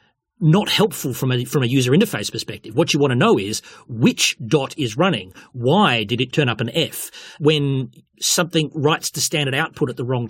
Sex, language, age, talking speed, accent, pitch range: male, English, 30-49, 205 wpm, Australian, 120-160 Hz